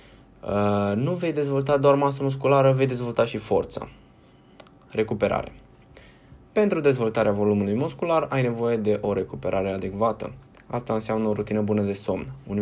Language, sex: Romanian, male